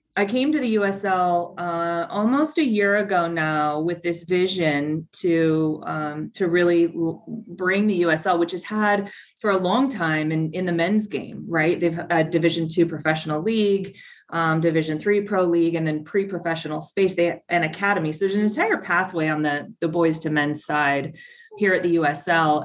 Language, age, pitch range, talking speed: English, 30-49, 155-190 Hz, 185 wpm